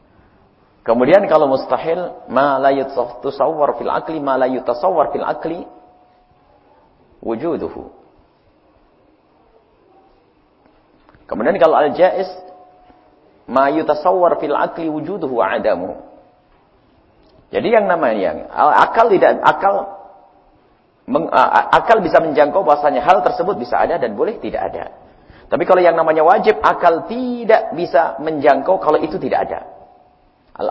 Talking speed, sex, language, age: 110 wpm, male, English, 50-69